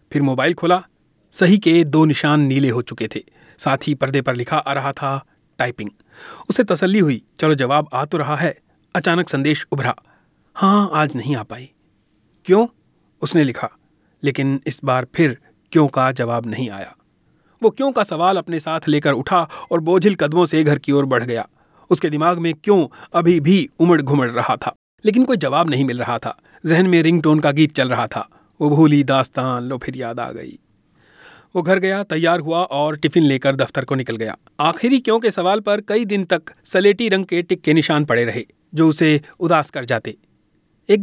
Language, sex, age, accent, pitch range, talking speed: Hindi, male, 30-49, native, 135-180 Hz, 195 wpm